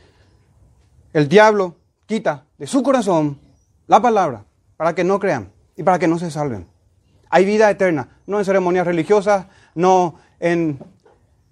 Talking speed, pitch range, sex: 140 wpm, 130-195 Hz, male